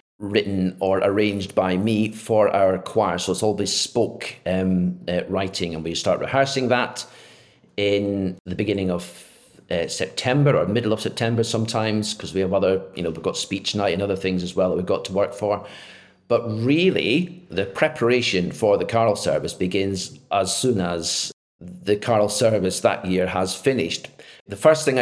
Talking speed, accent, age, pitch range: 180 wpm, British, 40-59, 95-120 Hz